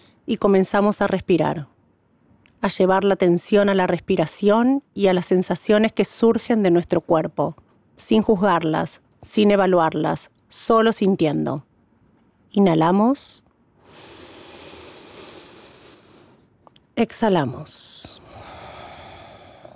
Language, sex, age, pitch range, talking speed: Spanish, female, 30-49, 175-210 Hz, 85 wpm